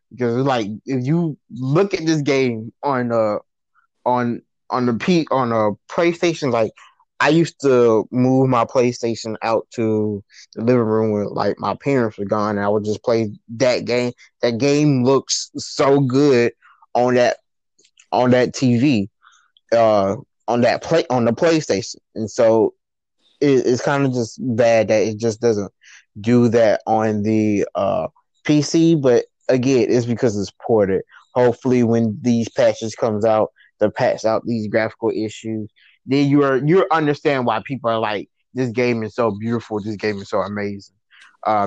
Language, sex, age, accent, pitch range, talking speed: English, male, 20-39, American, 110-140 Hz, 165 wpm